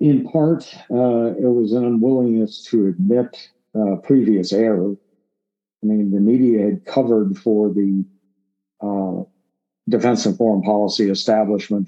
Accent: American